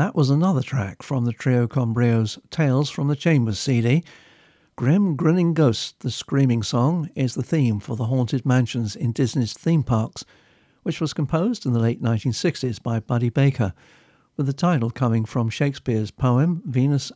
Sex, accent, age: male, British, 50-69